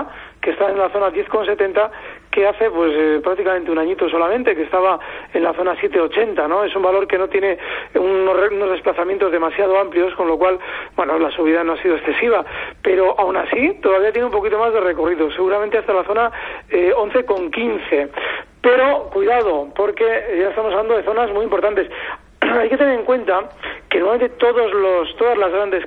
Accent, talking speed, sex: Spanish, 180 wpm, male